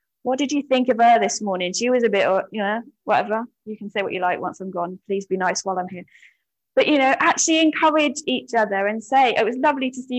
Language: English